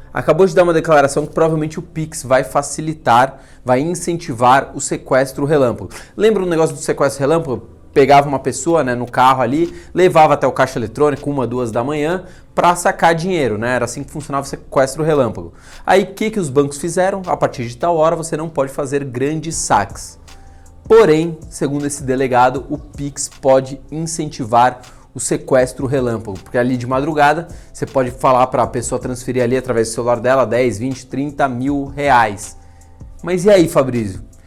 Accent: Brazilian